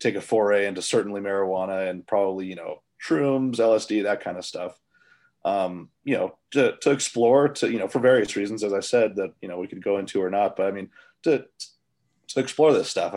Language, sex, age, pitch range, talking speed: English, male, 30-49, 90-105 Hz, 220 wpm